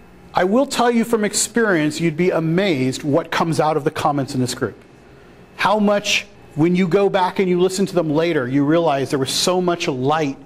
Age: 40-59